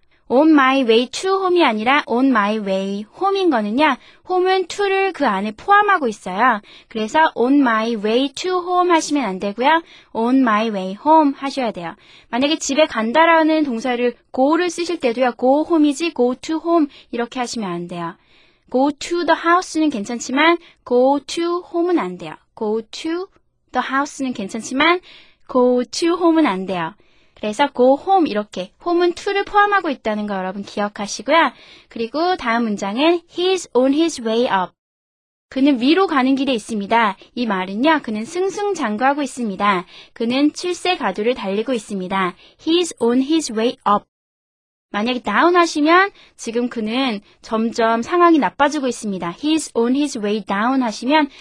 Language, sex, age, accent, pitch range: Korean, female, 20-39, native, 225-325 Hz